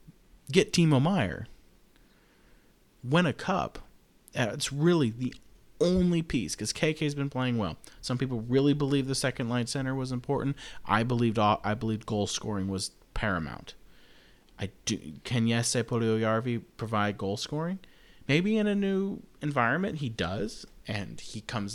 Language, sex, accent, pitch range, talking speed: English, male, American, 95-130 Hz, 150 wpm